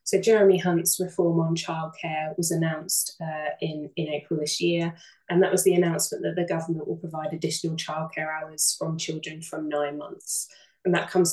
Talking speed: 185 wpm